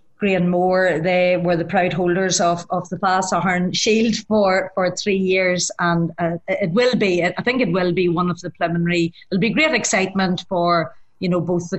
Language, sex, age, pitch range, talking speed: English, female, 30-49, 175-200 Hz, 200 wpm